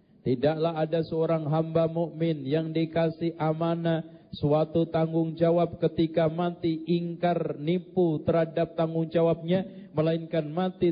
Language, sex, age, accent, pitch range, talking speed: Indonesian, male, 40-59, native, 170-235 Hz, 110 wpm